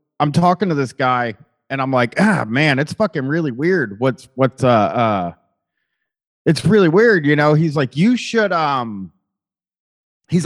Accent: American